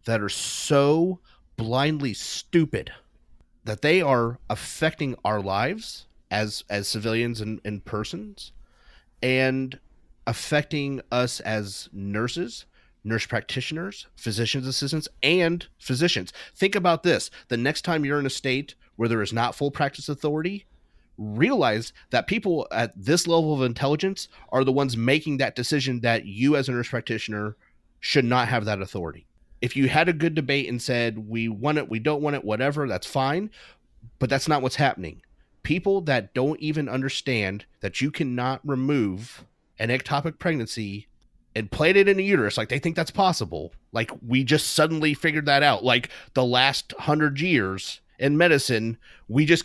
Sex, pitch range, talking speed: male, 110-150 Hz, 160 wpm